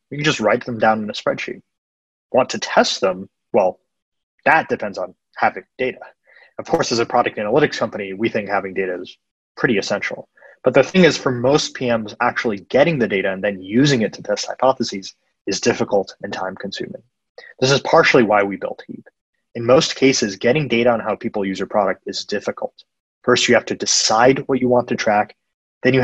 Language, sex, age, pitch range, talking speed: English, male, 20-39, 105-125 Hz, 205 wpm